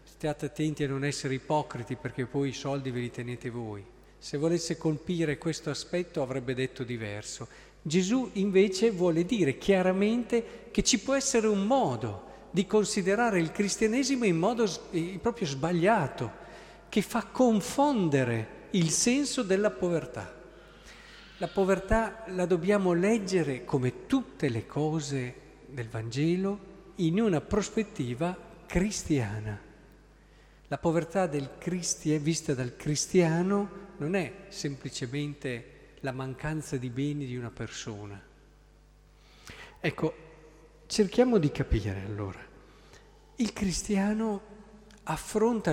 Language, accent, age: Italian, native, 50-69